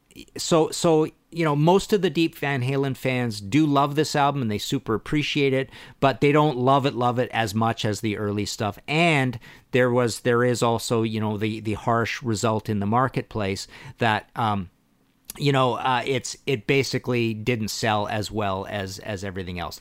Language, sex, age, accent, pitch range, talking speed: English, male, 50-69, American, 105-135 Hz, 195 wpm